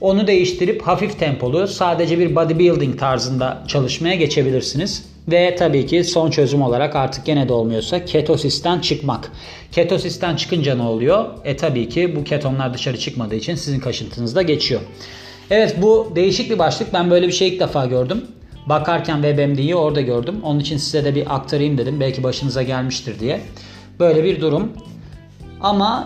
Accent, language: native, Turkish